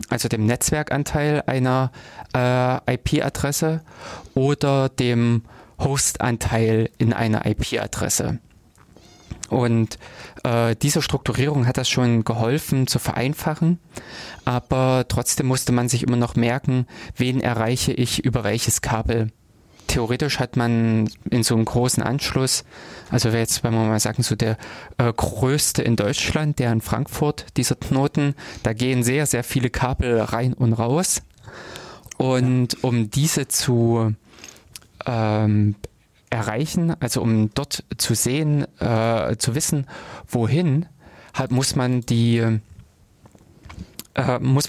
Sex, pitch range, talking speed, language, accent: male, 115-135 Hz, 120 wpm, German, German